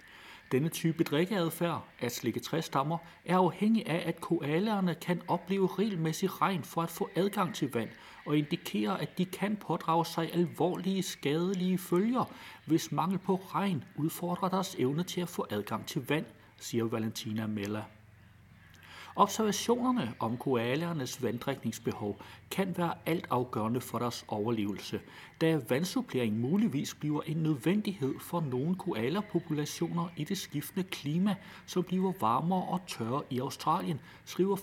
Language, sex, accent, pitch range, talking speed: Danish, male, native, 125-185 Hz, 135 wpm